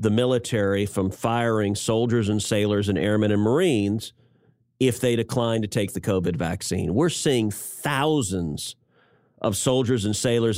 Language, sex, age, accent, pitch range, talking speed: English, male, 40-59, American, 115-140 Hz, 145 wpm